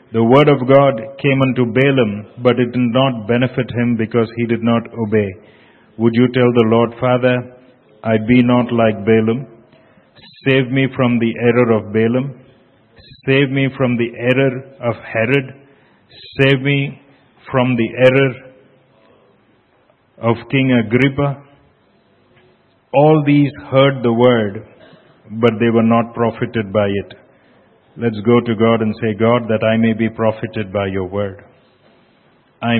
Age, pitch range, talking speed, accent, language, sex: 50-69, 115-135 Hz, 145 wpm, Indian, English, male